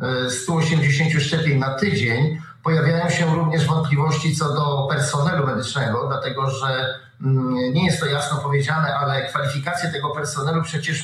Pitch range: 135-165 Hz